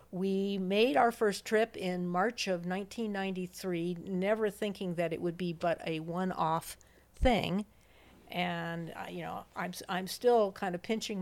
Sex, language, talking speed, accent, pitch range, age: female, English, 150 wpm, American, 175-215 Hz, 50-69